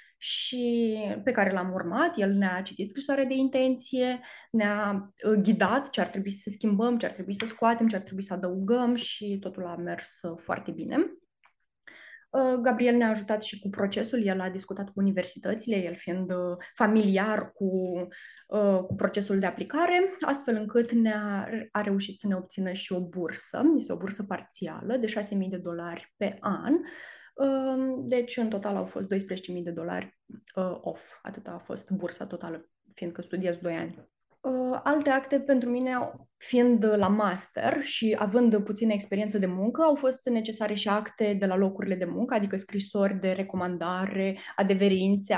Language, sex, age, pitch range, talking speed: Romanian, female, 20-39, 185-235 Hz, 165 wpm